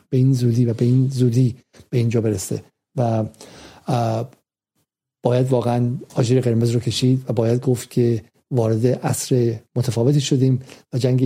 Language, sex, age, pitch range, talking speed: Persian, male, 50-69, 125-140 Hz, 145 wpm